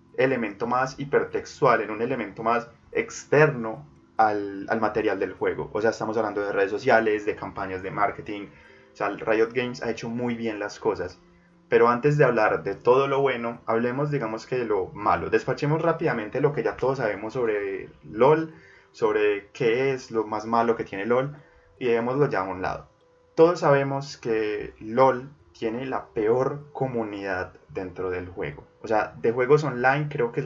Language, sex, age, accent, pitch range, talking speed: Spanish, male, 20-39, Colombian, 110-145 Hz, 180 wpm